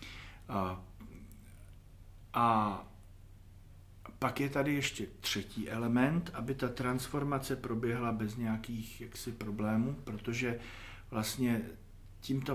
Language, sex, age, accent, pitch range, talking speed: Czech, male, 40-59, native, 100-120 Hz, 90 wpm